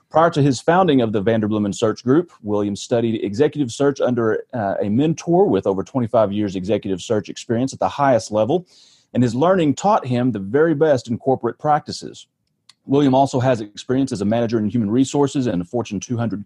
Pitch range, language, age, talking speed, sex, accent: 115-145 Hz, English, 30-49, 195 wpm, male, American